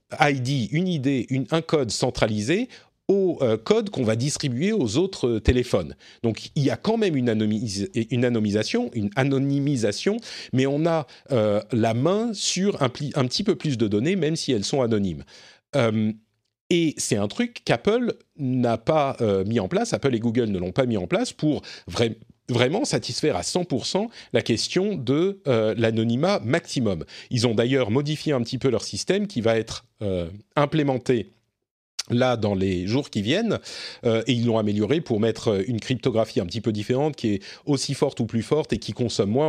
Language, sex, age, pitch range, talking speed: French, male, 40-59, 115-155 Hz, 190 wpm